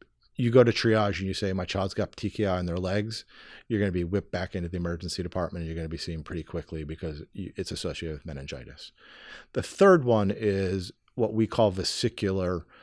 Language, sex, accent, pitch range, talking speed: English, male, American, 90-110 Hz, 210 wpm